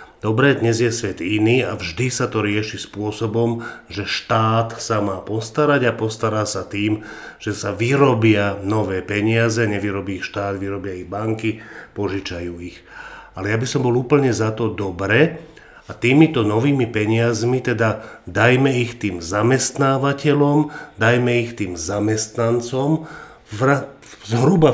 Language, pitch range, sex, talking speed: Slovak, 110-130 Hz, male, 145 wpm